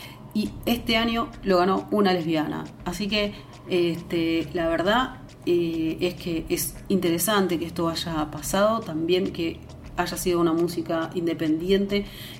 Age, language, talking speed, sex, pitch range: 40-59, Spanish, 130 wpm, female, 160-195 Hz